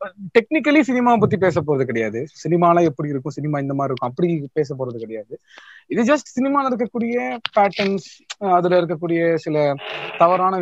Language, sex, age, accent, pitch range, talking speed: Tamil, male, 30-49, native, 140-205 Hz, 145 wpm